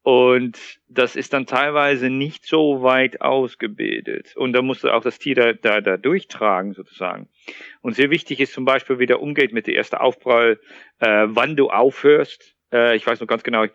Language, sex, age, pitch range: German, male, 40-59, 105-130 Hz